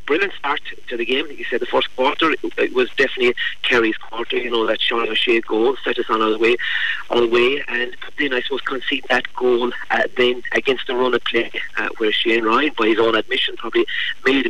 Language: English